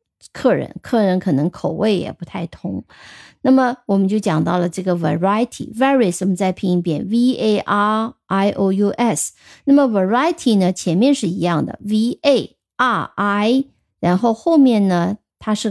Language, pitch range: Chinese, 185-240 Hz